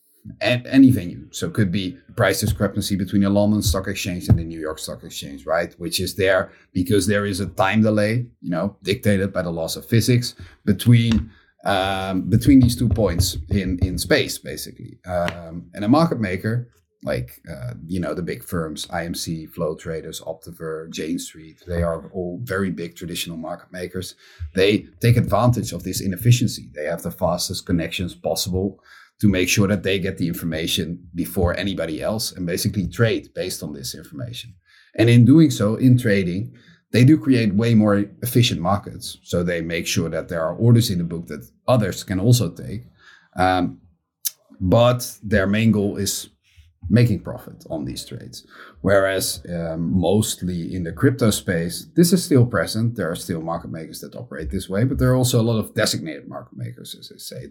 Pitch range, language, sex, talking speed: 85-110 Hz, English, male, 185 wpm